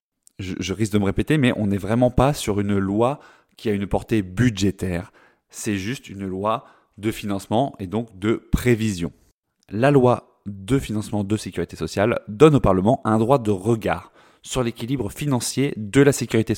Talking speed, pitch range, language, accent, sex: 175 wpm, 100-120 Hz, French, French, male